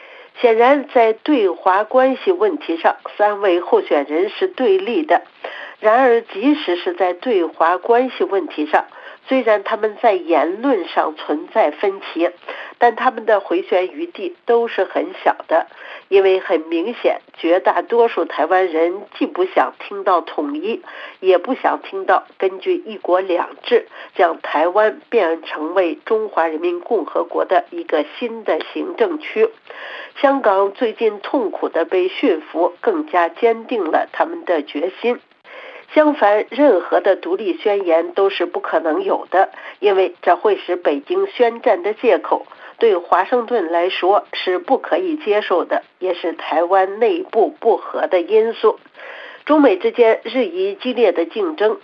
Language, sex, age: Chinese, female, 50-69